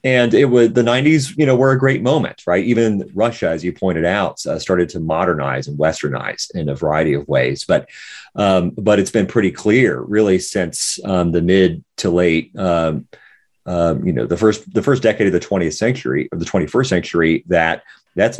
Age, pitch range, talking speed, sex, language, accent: 30-49, 80-105 Hz, 200 wpm, male, English, American